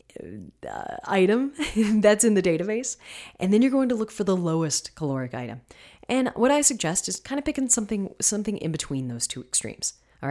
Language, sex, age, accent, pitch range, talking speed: English, female, 30-49, American, 140-195 Hz, 190 wpm